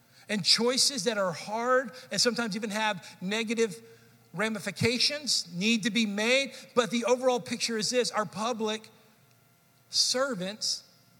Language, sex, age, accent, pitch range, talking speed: English, male, 50-69, American, 155-200 Hz, 130 wpm